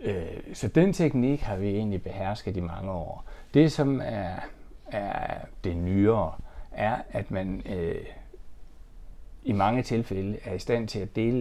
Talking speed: 155 wpm